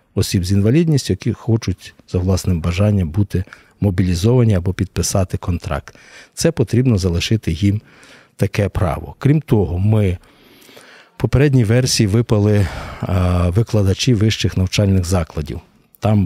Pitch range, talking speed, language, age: 95-120 Hz, 115 wpm, Ukrainian, 50-69